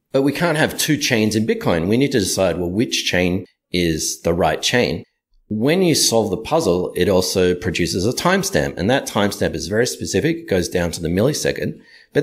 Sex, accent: male, Australian